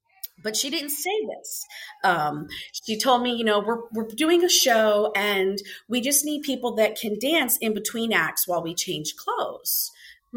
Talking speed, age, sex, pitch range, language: 185 wpm, 40-59, female, 180-260 Hz, English